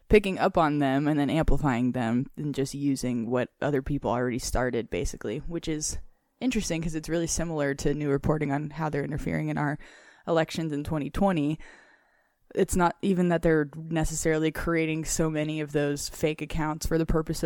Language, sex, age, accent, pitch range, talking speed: English, female, 20-39, American, 150-170 Hz, 180 wpm